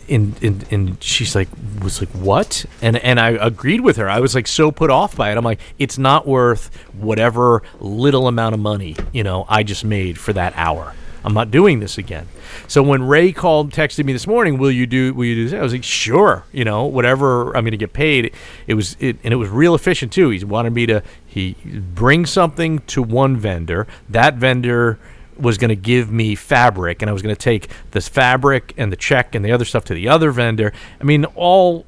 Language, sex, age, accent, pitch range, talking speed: English, male, 40-59, American, 105-135 Hz, 230 wpm